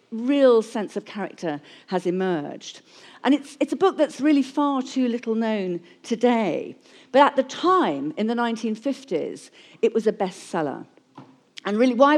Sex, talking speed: female, 160 wpm